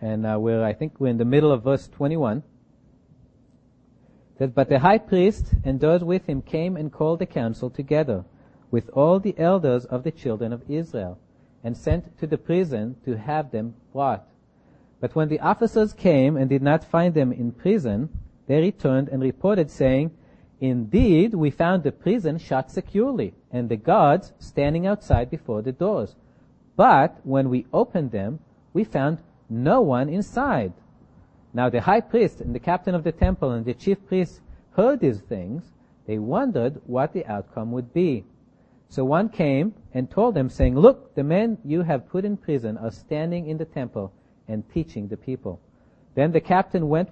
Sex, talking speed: male, 175 wpm